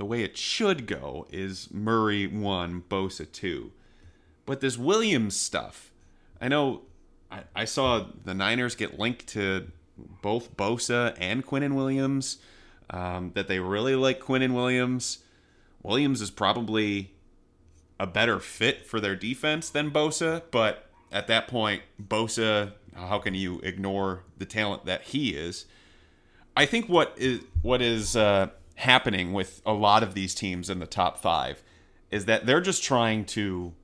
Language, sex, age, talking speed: English, male, 30-49, 150 wpm